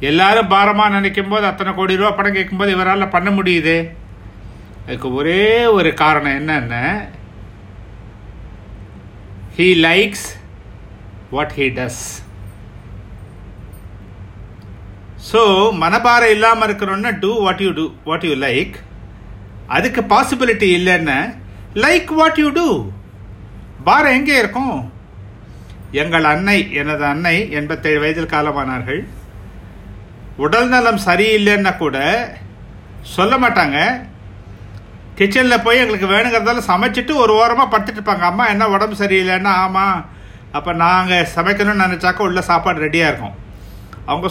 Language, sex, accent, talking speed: Tamil, male, native, 105 wpm